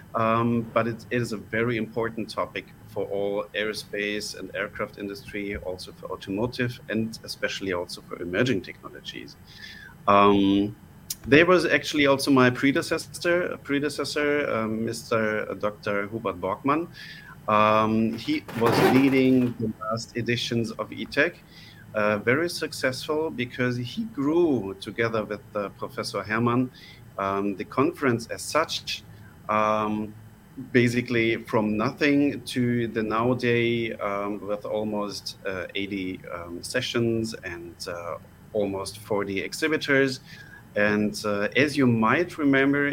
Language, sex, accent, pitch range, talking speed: German, male, German, 105-135 Hz, 120 wpm